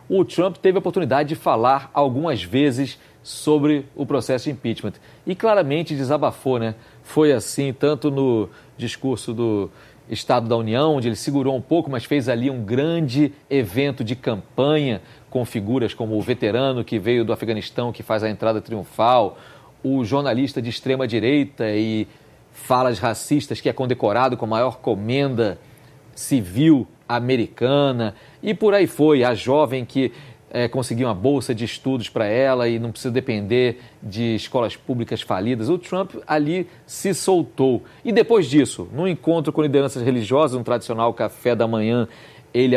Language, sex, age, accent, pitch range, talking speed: Portuguese, male, 40-59, Brazilian, 115-145 Hz, 155 wpm